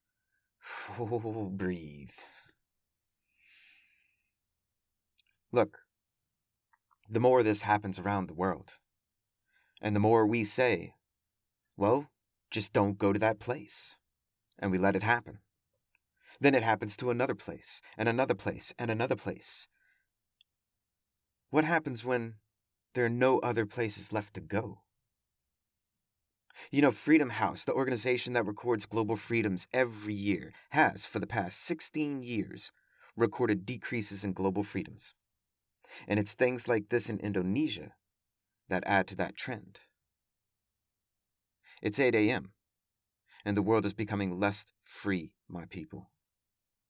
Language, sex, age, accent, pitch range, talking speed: English, male, 30-49, American, 100-120 Hz, 125 wpm